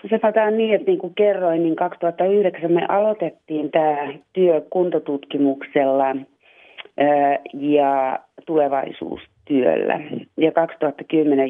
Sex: female